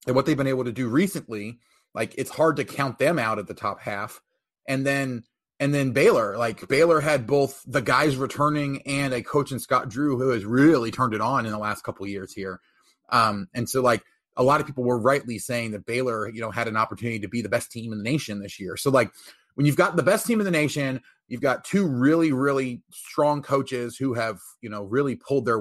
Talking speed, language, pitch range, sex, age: 240 wpm, English, 115-140 Hz, male, 30-49